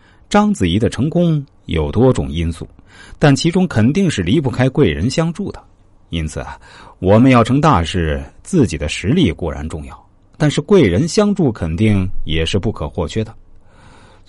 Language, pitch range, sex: Chinese, 85-125 Hz, male